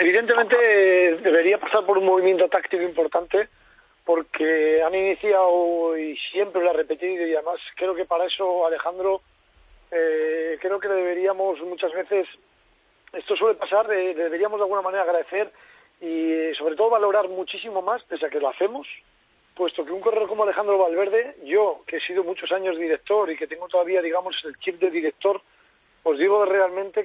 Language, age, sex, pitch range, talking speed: Spanish, 40-59, male, 170-210 Hz, 165 wpm